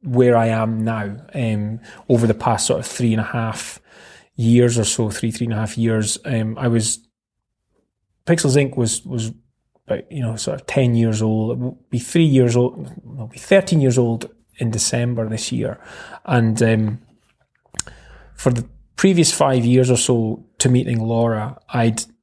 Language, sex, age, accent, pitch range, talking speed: English, male, 20-39, British, 110-130 Hz, 180 wpm